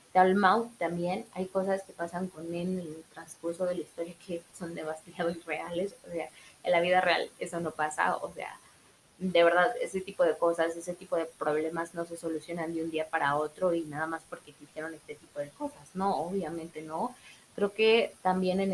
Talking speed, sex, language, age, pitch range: 200 wpm, female, Spanish, 20-39, 165-190 Hz